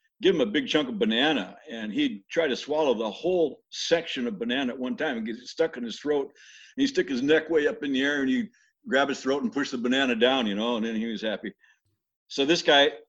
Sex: male